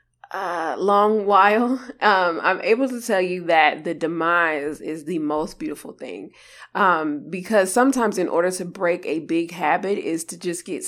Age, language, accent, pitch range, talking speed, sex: 20-39, English, American, 165-215 Hz, 170 wpm, female